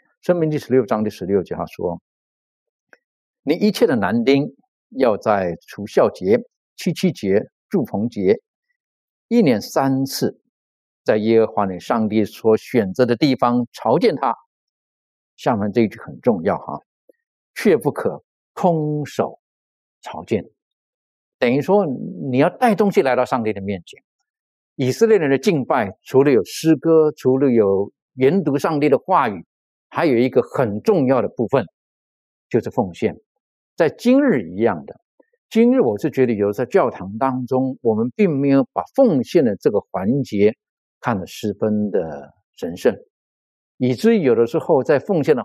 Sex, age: male, 50-69